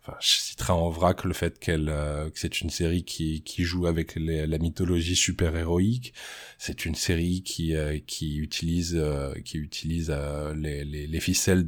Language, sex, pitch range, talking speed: French, male, 80-90 Hz, 195 wpm